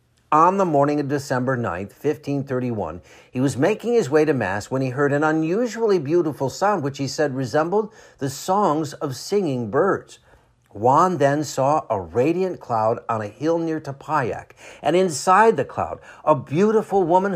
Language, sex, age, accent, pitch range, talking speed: English, male, 60-79, American, 130-175 Hz, 165 wpm